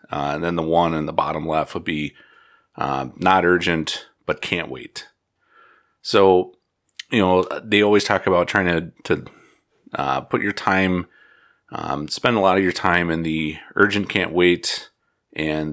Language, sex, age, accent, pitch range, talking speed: English, male, 30-49, American, 85-100 Hz, 170 wpm